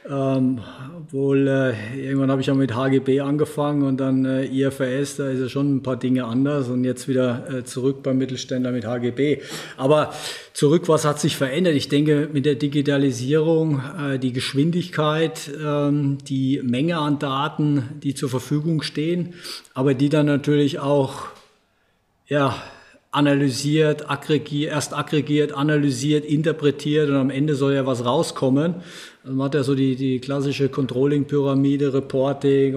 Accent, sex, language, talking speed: German, male, German, 150 wpm